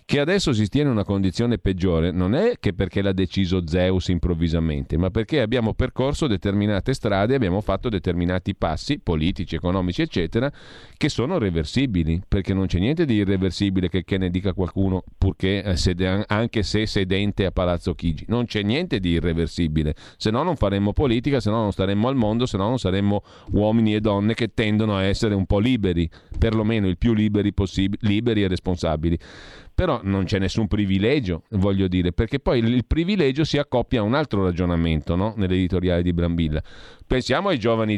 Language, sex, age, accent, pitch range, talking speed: Italian, male, 40-59, native, 90-115 Hz, 175 wpm